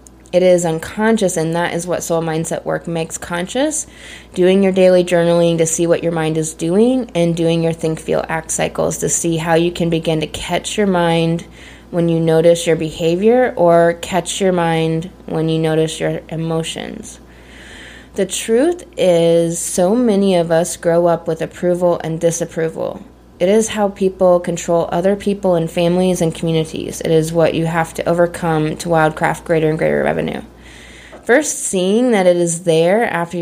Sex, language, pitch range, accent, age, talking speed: female, English, 165-190 Hz, American, 20-39, 170 wpm